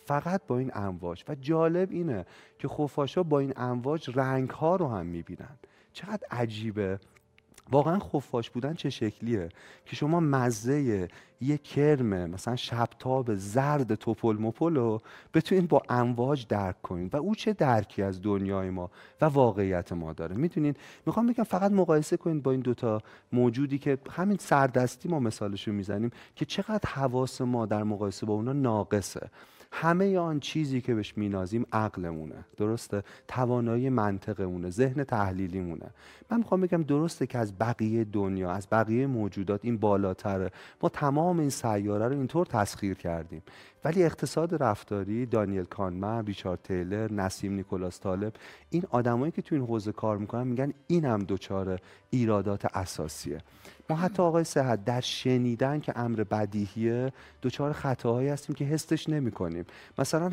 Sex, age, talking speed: male, 30-49, 145 wpm